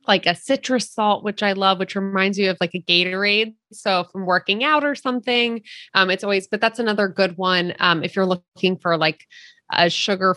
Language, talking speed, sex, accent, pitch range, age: English, 210 wpm, female, American, 185-230 Hz, 20-39